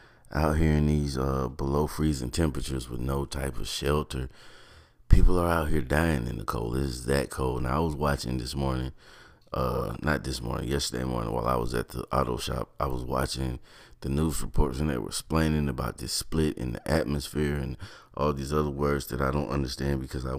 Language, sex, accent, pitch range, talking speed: English, male, American, 65-80 Hz, 210 wpm